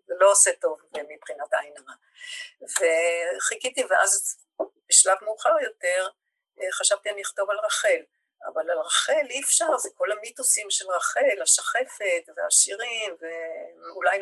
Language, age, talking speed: Hebrew, 50-69, 125 wpm